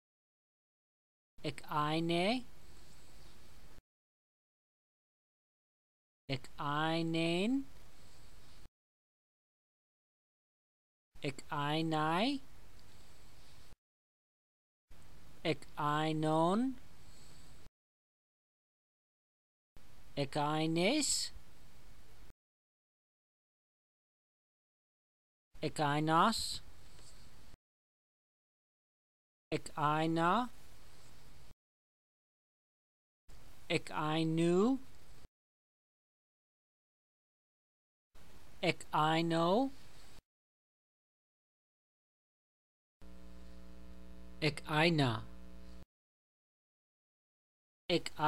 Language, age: English, 40-59